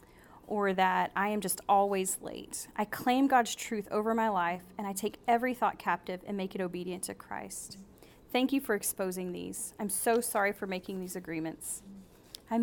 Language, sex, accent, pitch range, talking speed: English, female, American, 185-230 Hz, 185 wpm